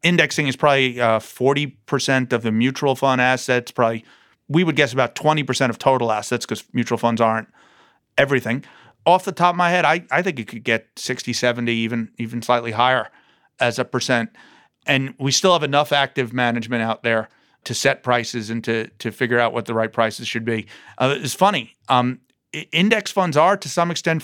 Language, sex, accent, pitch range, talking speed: English, male, American, 120-140 Hz, 195 wpm